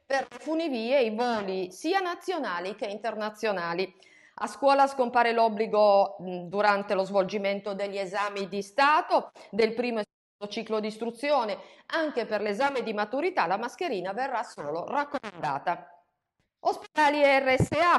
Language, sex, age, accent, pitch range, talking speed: Italian, female, 40-59, native, 200-275 Hz, 135 wpm